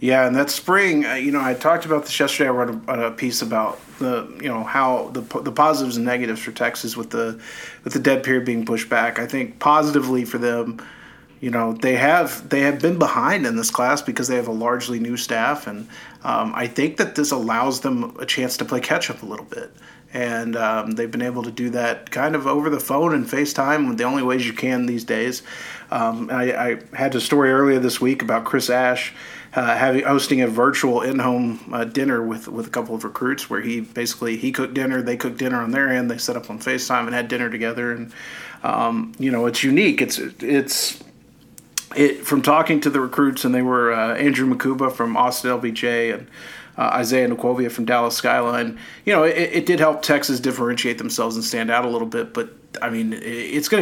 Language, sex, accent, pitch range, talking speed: English, male, American, 120-140 Hz, 220 wpm